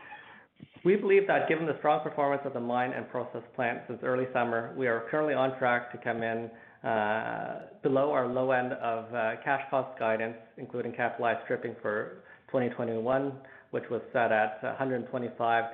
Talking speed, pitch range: 170 wpm, 110-130 Hz